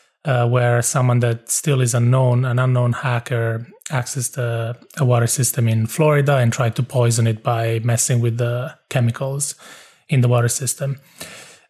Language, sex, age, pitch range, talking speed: English, male, 30-49, 120-145 Hz, 165 wpm